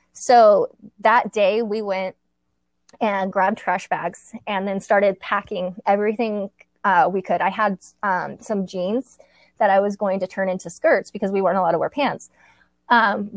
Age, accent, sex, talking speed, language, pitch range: 20-39, American, female, 170 wpm, English, 185-220 Hz